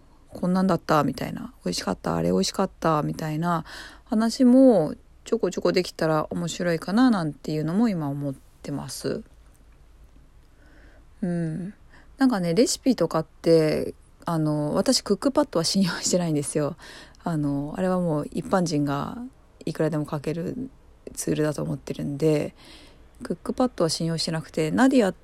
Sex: female